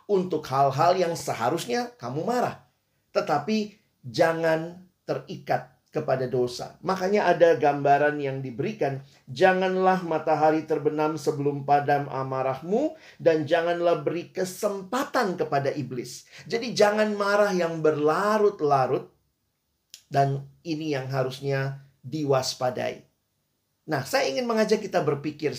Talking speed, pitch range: 105 wpm, 140-200 Hz